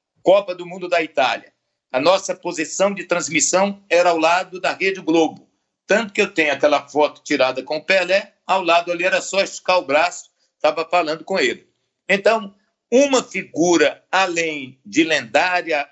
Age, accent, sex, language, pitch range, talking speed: 60-79, Brazilian, male, Portuguese, 160-210 Hz, 165 wpm